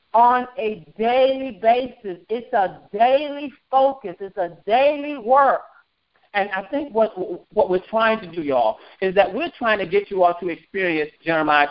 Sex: male